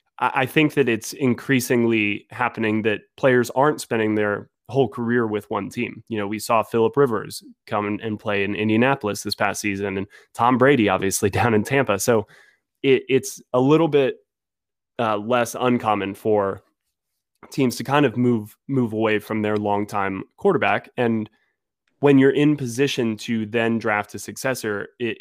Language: English